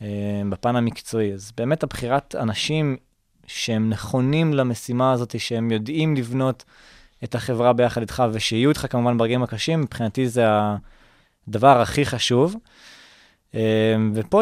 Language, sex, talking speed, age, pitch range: Hebrew, male, 115 wpm, 20-39, 115-145 Hz